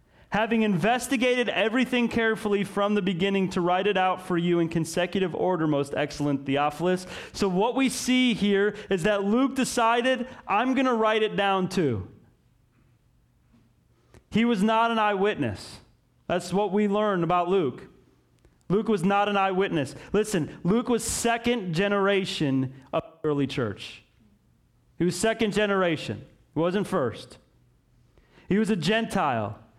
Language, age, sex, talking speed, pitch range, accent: English, 30-49, male, 140 wpm, 175-220 Hz, American